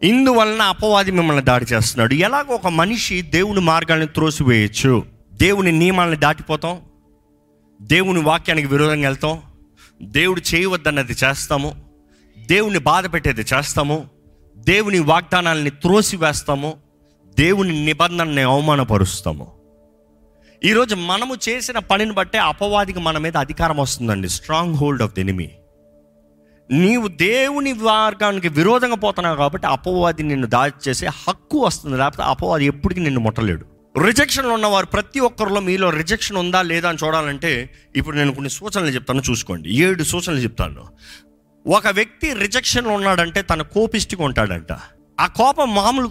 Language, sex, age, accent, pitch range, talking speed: Telugu, male, 30-49, native, 125-200 Hz, 120 wpm